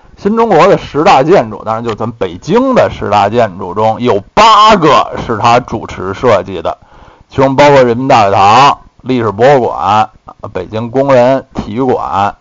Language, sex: Chinese, male